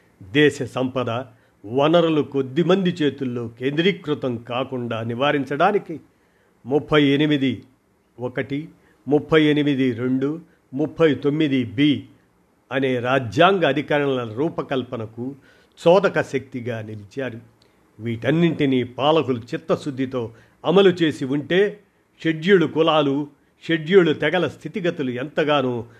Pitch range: 125-155 Hz